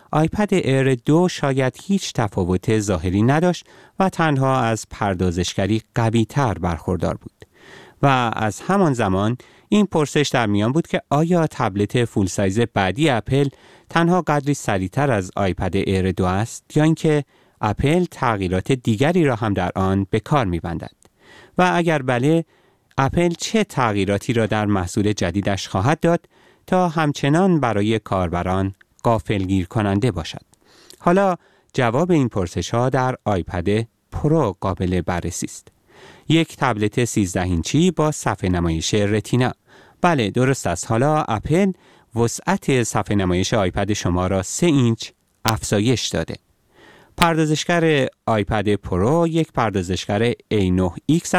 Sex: male